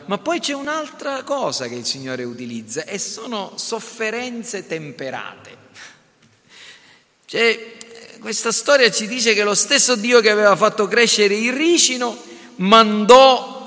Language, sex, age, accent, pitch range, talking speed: Italian, male, 40-59, native, 175-235 Hz, 125 wpm